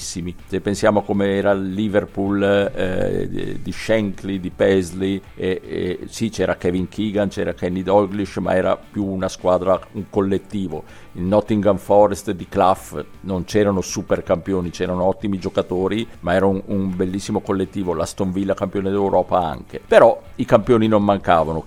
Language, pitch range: Italian, 95-110 Hz